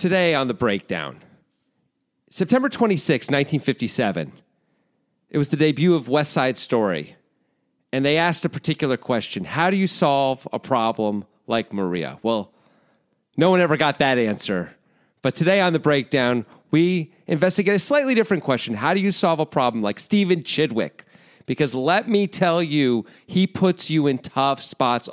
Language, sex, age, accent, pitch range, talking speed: English, male, 40-59, American, 130-185 Hz, 160 wpm